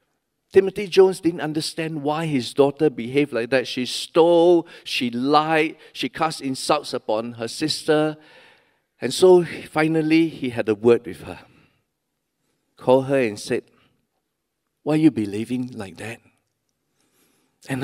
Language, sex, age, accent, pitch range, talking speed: English, male, 50-69, Malaysian, 125-175 Hz, 135 wpm